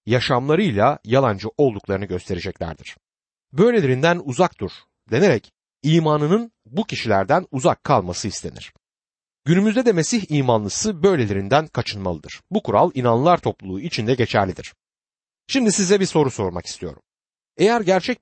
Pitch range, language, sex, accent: 110-175 Hz, Turkish, male, native